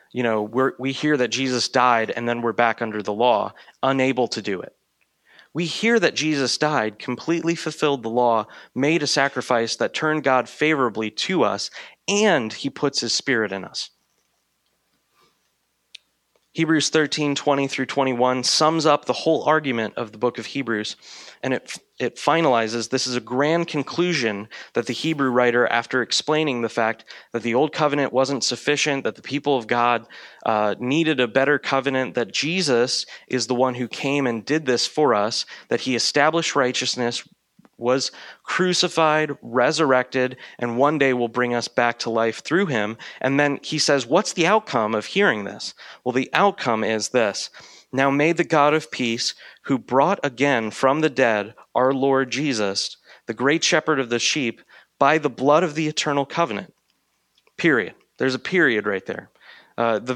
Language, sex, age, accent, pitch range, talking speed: English, male, 20-39, American, 120-150 Hz, 175 wpm